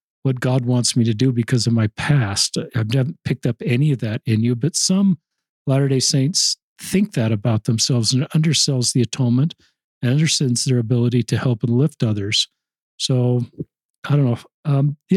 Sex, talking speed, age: male, 185 wpm, 50-69